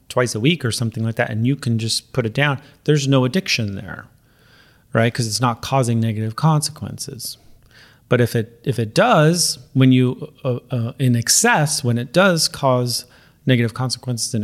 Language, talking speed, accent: English, 185 wpm, American